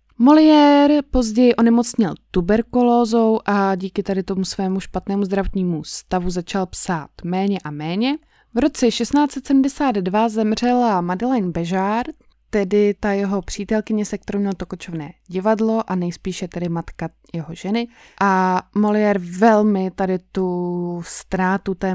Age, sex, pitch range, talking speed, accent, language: 20-39, female, 180-225 Hz, 125 wpm, native, Czech